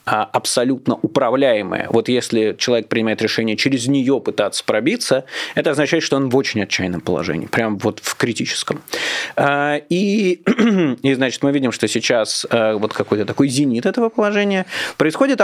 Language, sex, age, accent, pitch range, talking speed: Russian, male, 20-39, native, 120-175 Hz, 145 wpm